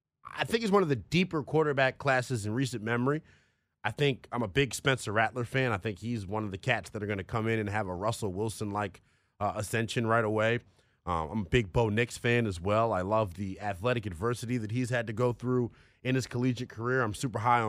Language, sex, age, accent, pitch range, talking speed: English, male, 30-49, American, 105-130 Hz, 235 wpm